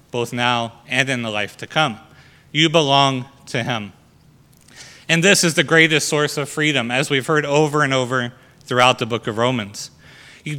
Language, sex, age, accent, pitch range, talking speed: English, male, 30-49, American, 130-155 Hz, 180 wpm